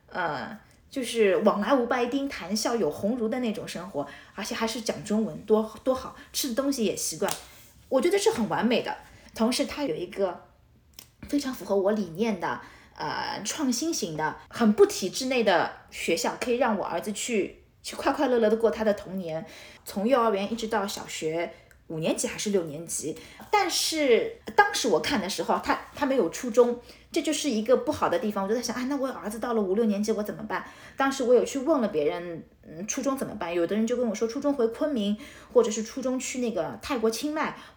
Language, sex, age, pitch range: Chinese, female, 20-39, 205-270 Hz